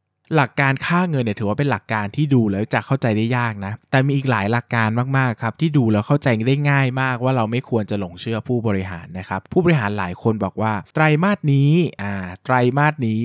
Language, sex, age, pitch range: Thai, male, 20-39, 105-135 Hz